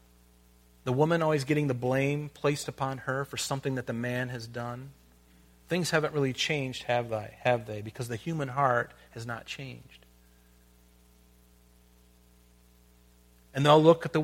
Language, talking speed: English, 150 wpm